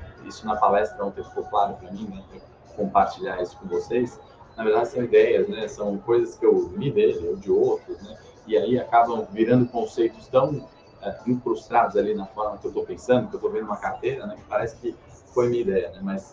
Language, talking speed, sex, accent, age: Portuguese, 215 wpm, male, Brazilian, 20-39